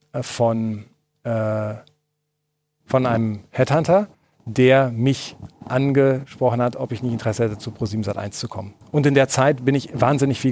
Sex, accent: male, German